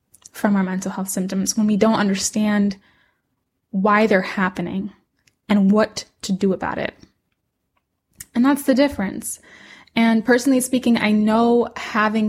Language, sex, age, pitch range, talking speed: English, female, 10-29, 200-235 Hz, 135 wpm